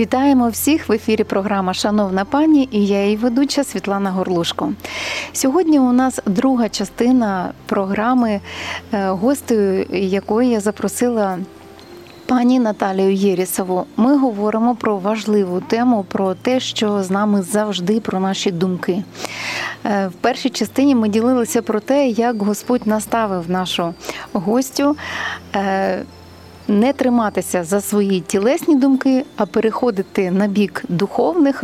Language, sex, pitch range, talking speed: Ukrainian, female, 200-250 Hz, 120 wpm